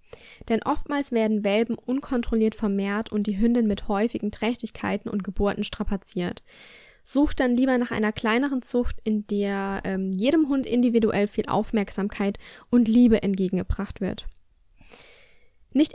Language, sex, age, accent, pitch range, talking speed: German, female, 10-29, German, 210-245 Hz, 130 wpm